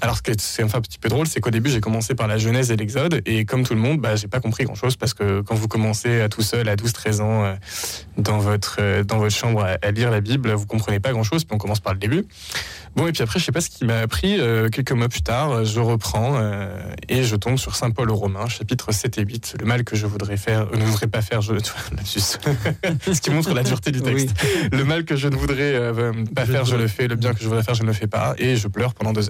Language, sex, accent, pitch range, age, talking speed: French, male, French, 110-130 Hz, 20-39, 300 wpm